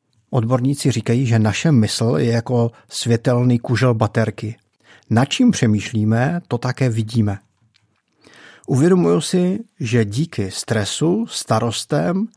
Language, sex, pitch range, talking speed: Czech, male, 110-135 Hz, 105 wpm